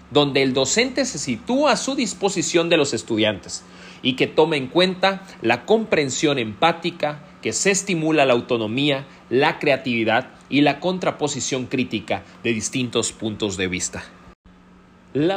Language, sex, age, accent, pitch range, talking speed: Spanish, male, 40-59, Mexican, 115-185 Hz, 140 wpm